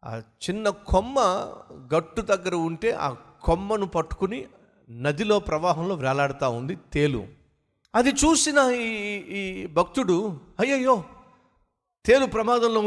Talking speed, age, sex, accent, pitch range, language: 100 wpm, 50-69, male, native, 135-220 Hz, Telugu